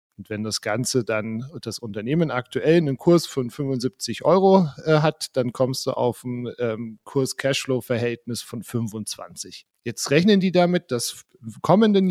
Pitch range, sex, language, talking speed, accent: 120-145 Hz, male, German, 145 wpm, German